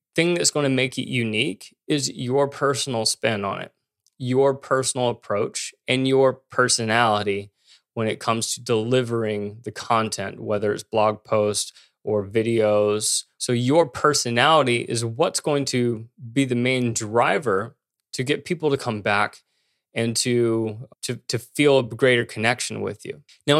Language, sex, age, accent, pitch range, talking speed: English, male, 20-39, American, 115-145 Hz, 155 wpm